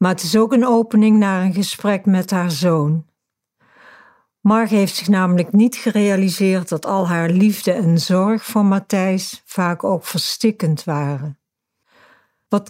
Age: 60-79